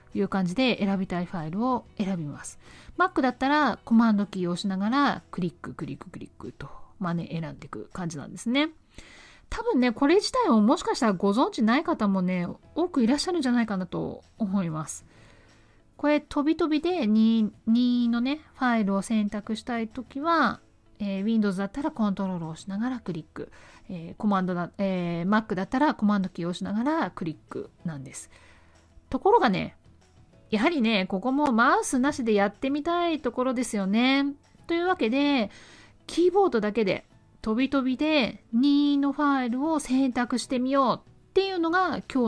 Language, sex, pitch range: Japanese, female, 185-280 Hz